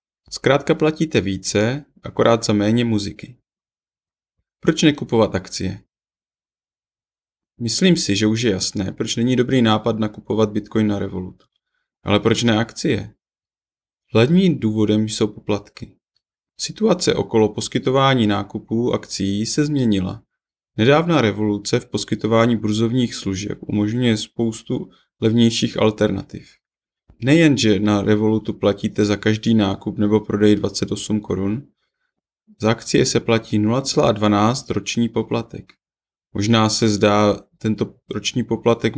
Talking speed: 110 wpm